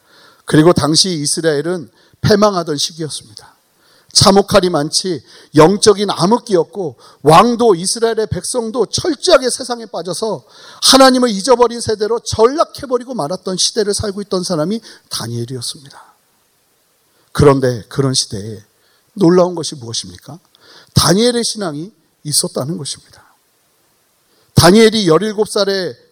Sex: male